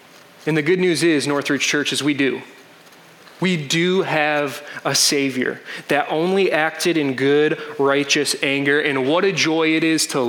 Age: 20-39